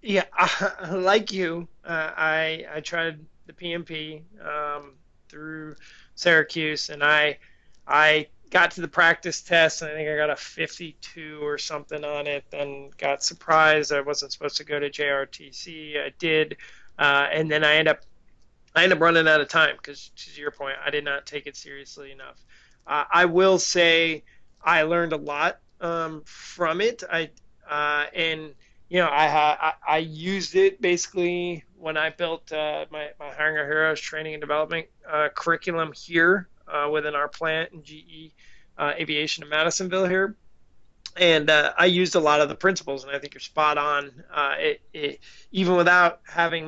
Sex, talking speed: male, 175 wpm